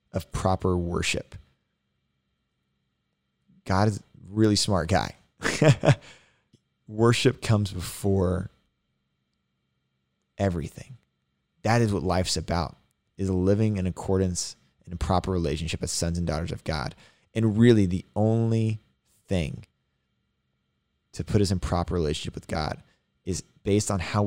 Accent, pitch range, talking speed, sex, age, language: American, 85-110 Hz, 120 wpm, male, 20-39, English